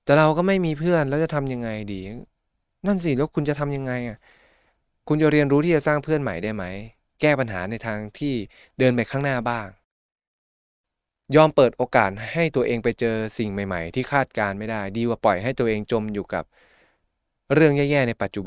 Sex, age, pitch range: male, 20-39, 100-140 Hz